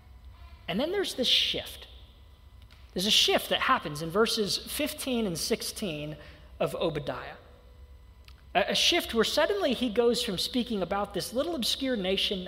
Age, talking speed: 40-59, 145 wpm